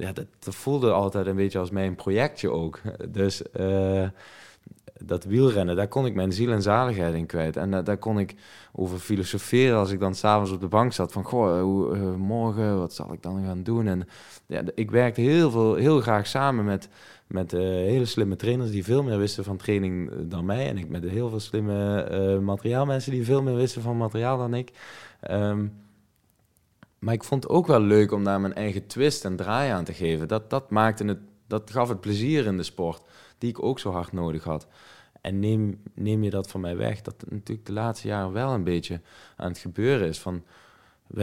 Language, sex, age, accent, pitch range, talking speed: Dutch, male, 20-39, Dutch, 95-115 Hz, 215 wpm